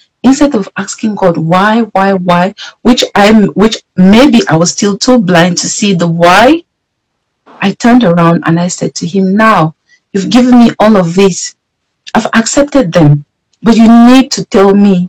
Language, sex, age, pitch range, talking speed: English, female, 50-69, 155-200 Hz, 175 wpm